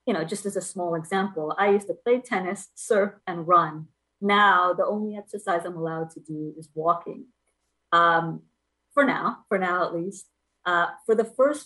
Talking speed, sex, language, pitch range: 185 wpm, female, English, 165-205 Hz